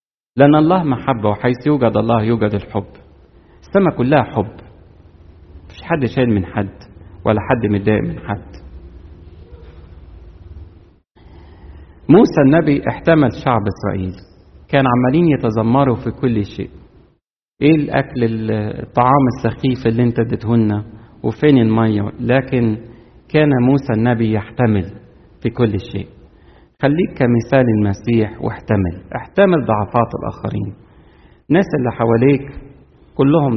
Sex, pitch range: male, 95-125 Hz